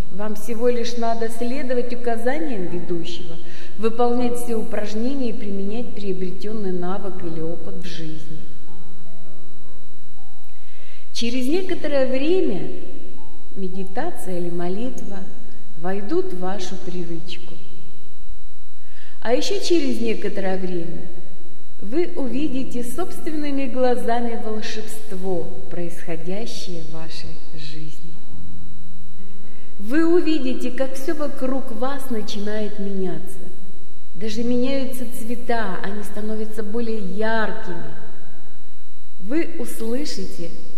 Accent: native